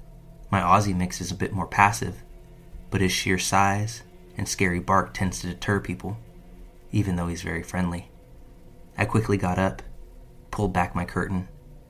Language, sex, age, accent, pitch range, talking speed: English, male, 20-39, American, 90-105 Hz, 160 wpm